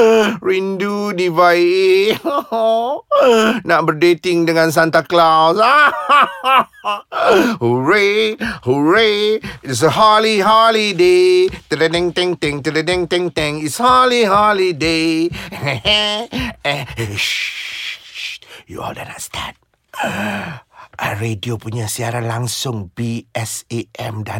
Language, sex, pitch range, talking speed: Malay, male, 120-180 Hz, 85 wpm